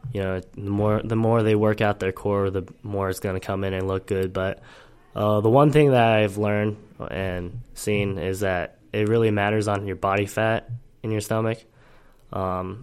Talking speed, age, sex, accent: 205 wpm, 10-29, male, American